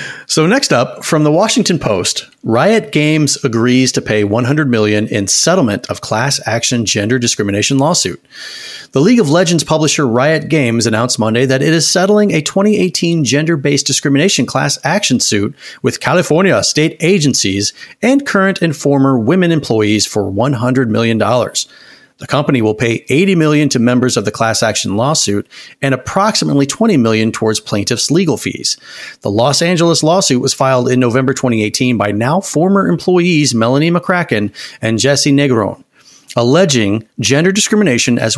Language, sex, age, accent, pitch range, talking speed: English, male, 30-49, American, 115-165 Hz, 150 wpm